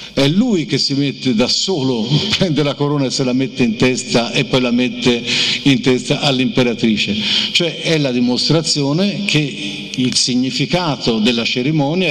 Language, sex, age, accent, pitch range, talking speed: Italian, male, 50-69, native, 130-205 Hz, 160 wpm